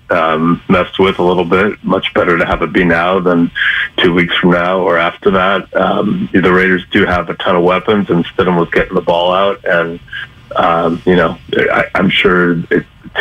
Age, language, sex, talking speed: 40-59, English, male, 205 wpm